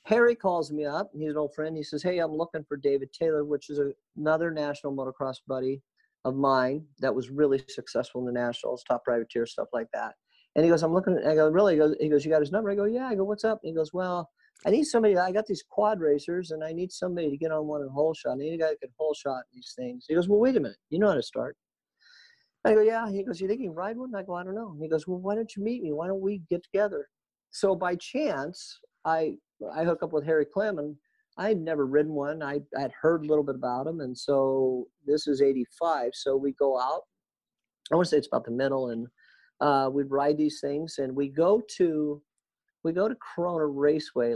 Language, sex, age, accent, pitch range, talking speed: English, male, 50-69, American, 140-185 Hz, 255 wpm